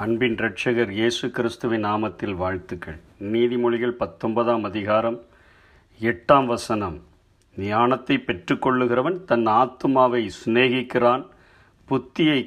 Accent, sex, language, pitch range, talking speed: native, male, Tamil, 105-130 Hz, 80 wpm